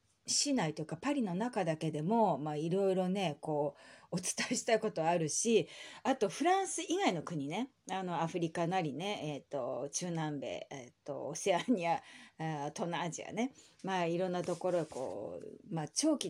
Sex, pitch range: female, 165-245 Hz